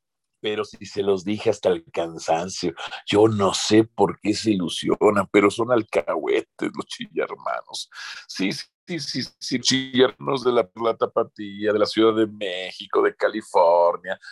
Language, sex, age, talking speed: Spanish, male, 50-69, 155 wpm